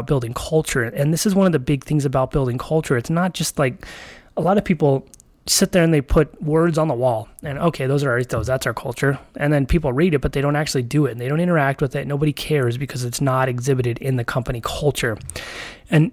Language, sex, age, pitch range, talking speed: English, male, 30-49, 130-150 Hz, 245 wpm